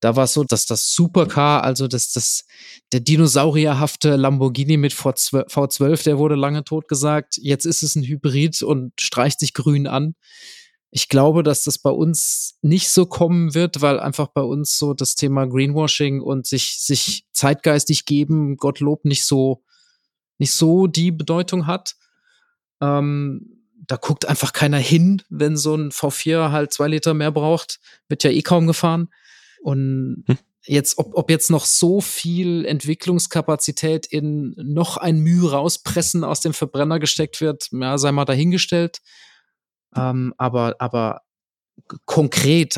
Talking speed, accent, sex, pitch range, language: 150 wpm, German, male, 140-160 Hz, German